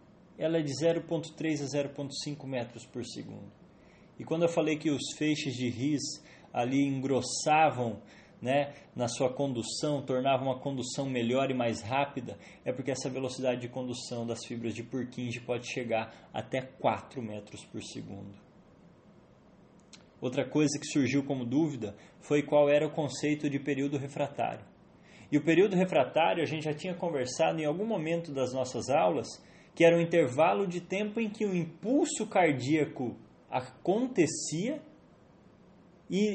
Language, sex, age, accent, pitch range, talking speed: English, male, 20-39, Brazilian, 125-170 Hz, 150 wpm